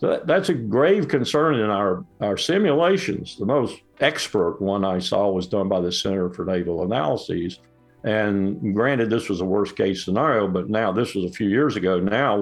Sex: male